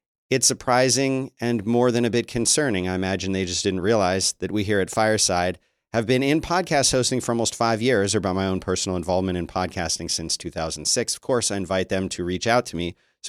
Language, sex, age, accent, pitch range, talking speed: English, male, 40-59, American, 95-125 Hz, 235 wpm